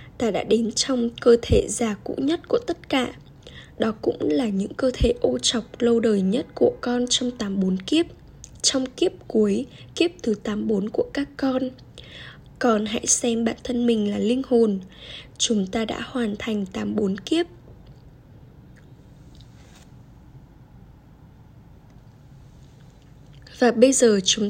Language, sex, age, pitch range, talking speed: Vietnamese, female, 10-29, 215-255 Hz, 150 wpm